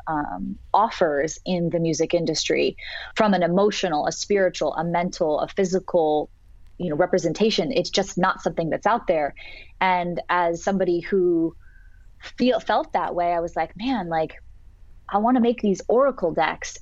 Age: 20-39